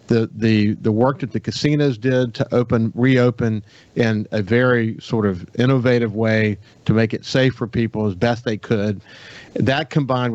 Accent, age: American, 40-59